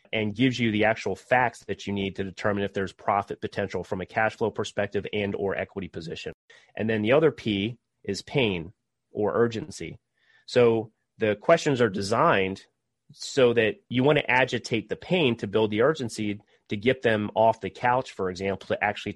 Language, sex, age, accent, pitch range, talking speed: English, male, 30-49, American, 100-120 Hz, 190 wpm